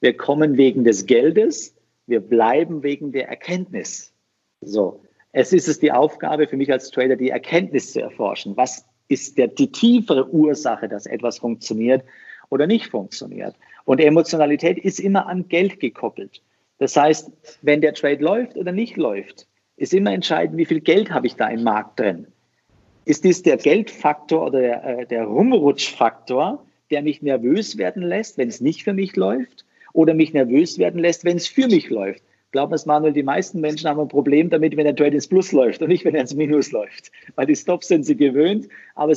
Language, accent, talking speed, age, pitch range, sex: German, German, 185 wpm, 50-69, 135-180 Hz, male